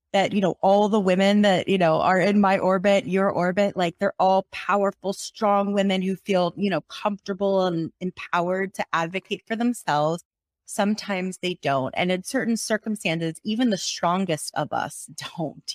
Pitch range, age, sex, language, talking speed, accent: 175-210 Hz, 30-49, female, English, 170 wpm, American